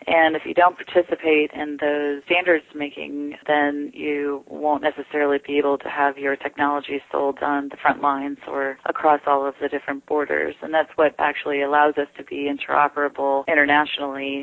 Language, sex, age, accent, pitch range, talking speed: English, female, 30-49, American, 140-150 Hz, 165 wpm